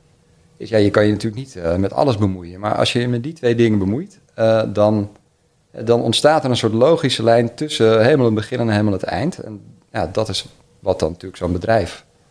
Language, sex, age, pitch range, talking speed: Dutch, male, 40-59, 100-120 Hz, 225 wpm